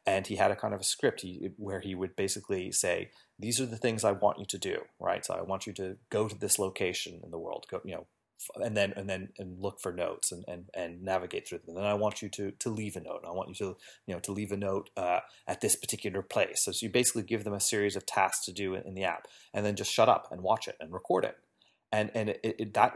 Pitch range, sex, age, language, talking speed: 95-110 Hz, male, 30-49, English, 280 wpm